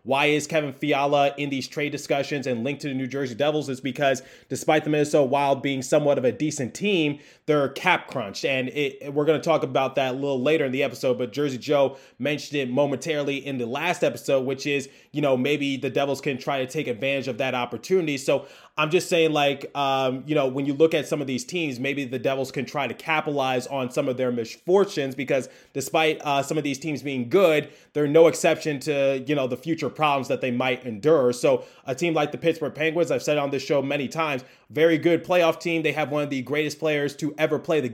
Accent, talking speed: American, 235 wpm